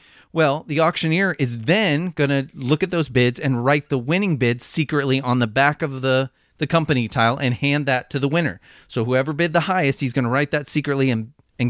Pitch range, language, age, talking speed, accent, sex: 130-165 Hz, English, 30-49, 225 wpm, American, male